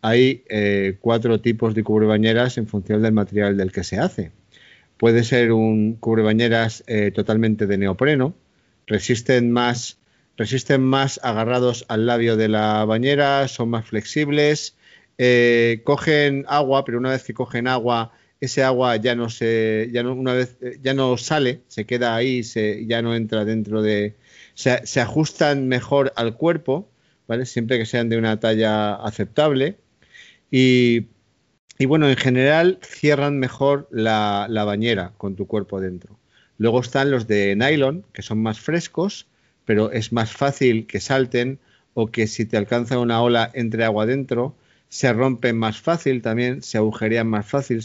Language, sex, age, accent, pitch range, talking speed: Spanish, male, 40-59, Spanish, 110-130 Hz, 160 wpm